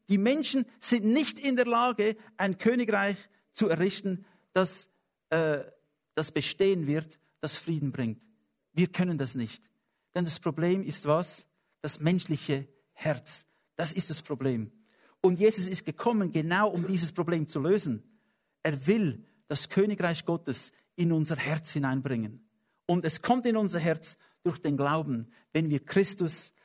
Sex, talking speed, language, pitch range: male, 150 wpm, English, 150-200 Hz